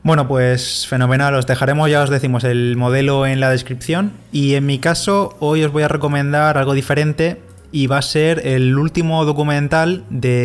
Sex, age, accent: male, 20-39, Spanish